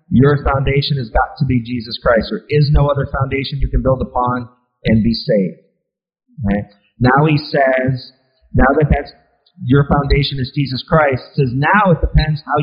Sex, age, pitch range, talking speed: male, 40-59, 130-155 Hz, 175 wpm